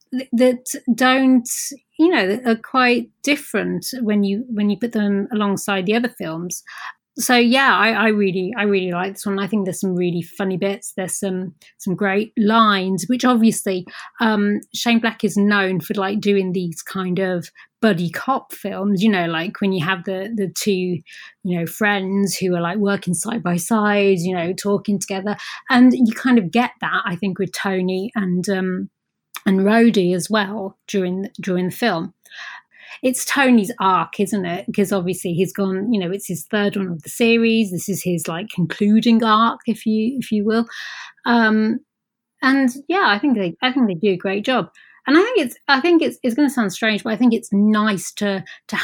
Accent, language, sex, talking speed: British, English, female, 195 wpm